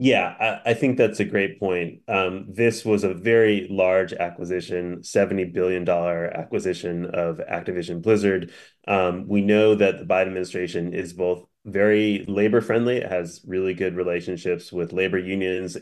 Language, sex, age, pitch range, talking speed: English, male, 30-49, 90-100 Hz, 150 wpm